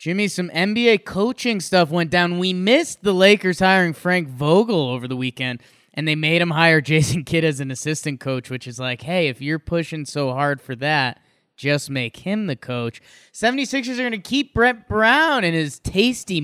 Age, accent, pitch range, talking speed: 20-39, American, 150-205 Hz, 195 wpm